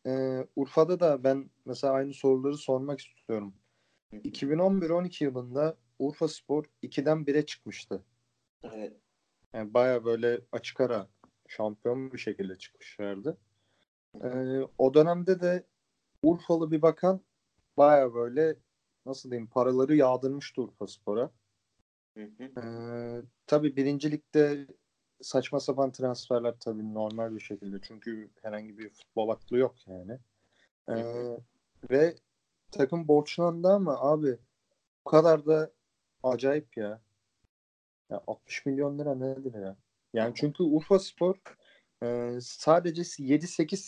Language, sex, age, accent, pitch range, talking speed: Turkish, male, 40-59, native, 110-150 Hz, 110 wpm